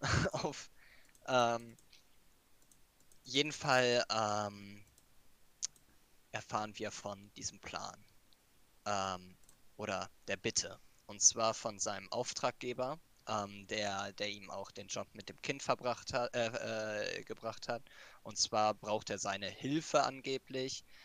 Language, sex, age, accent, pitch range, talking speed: German, male, 20-39, German, 105-120 Hz, 120 wpm